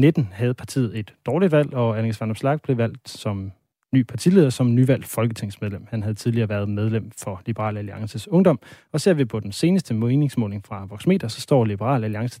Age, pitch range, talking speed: 30-49, 115-145 Hz, 190 wpm